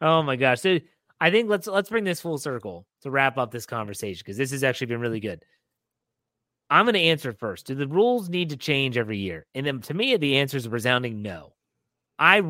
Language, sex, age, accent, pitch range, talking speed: English, male, 30-49, American, 120-155 Hz, 230 wpm